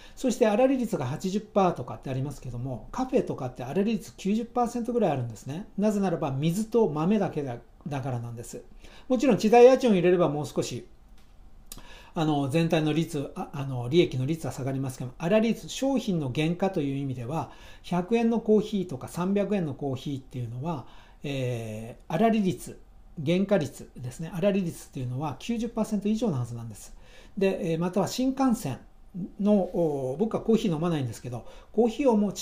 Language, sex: Japanese, male